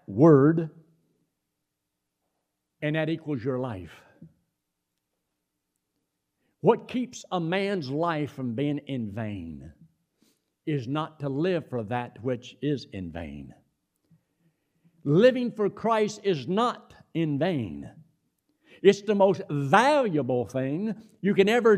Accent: American